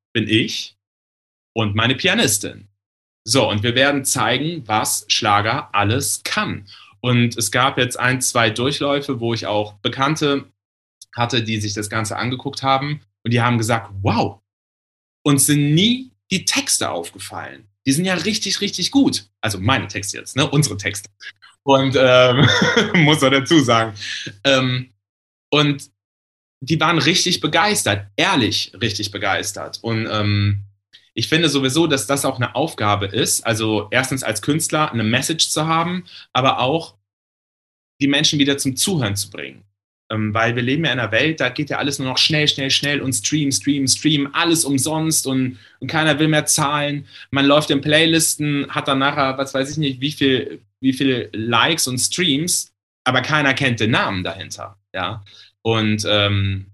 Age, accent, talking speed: 30-49, German, 165 wpm